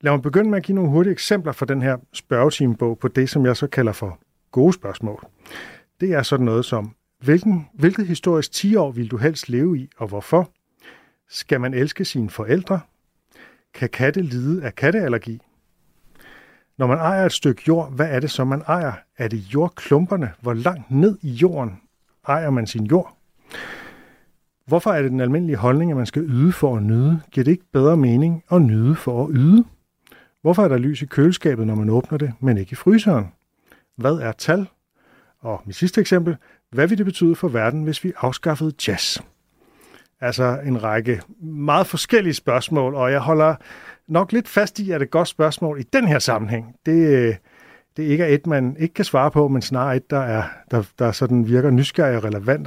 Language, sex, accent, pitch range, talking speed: Danish, male, native, 125-165 Hz, 195 wpm